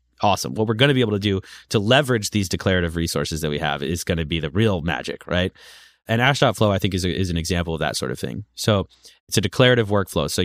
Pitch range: 85-115 Hz